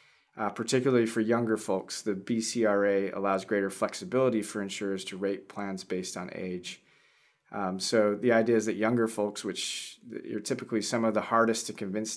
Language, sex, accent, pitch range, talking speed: English, male, American, 100-115 Hz, 180 wpm